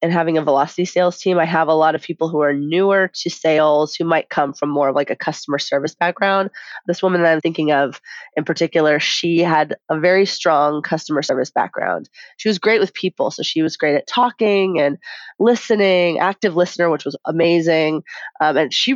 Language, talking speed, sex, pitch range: English, 205 wpm, female, 155-190 Hz